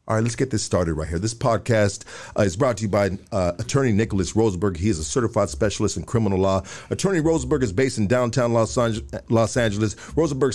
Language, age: English, 50-69